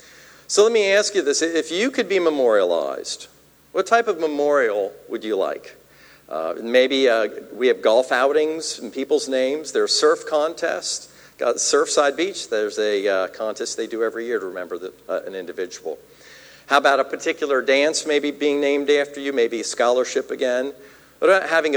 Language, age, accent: English, 50-69, American